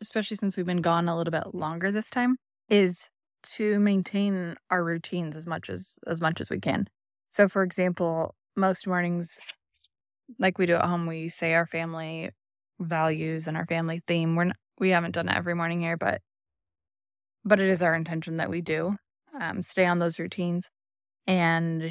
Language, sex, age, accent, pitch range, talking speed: English, female, 20-39, American, 160-185 Hz, 180 wpm